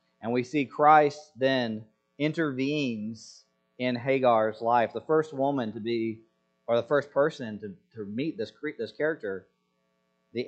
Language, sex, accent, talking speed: English, male, American, 145 wpm